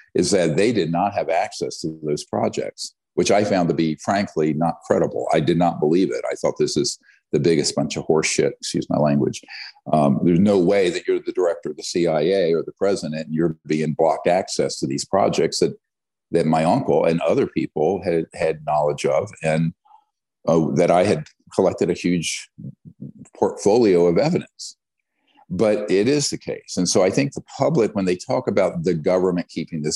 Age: 50-69